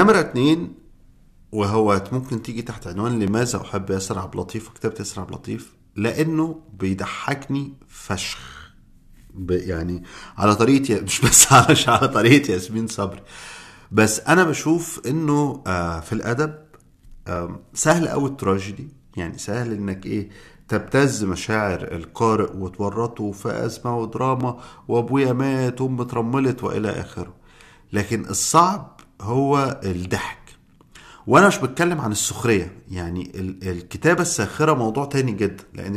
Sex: male